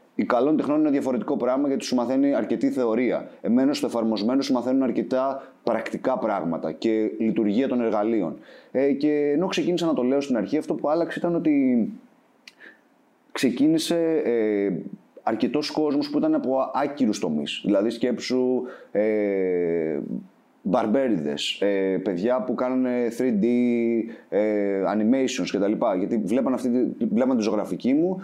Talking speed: 135 wpm